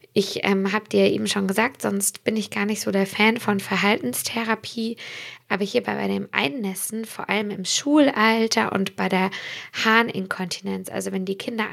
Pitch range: 195-225 Hz